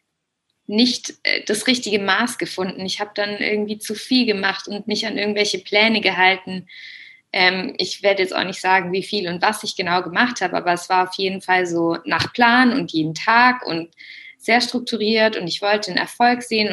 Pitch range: 175-210 Hz